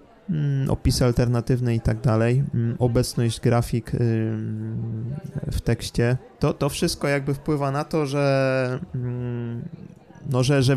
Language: Polish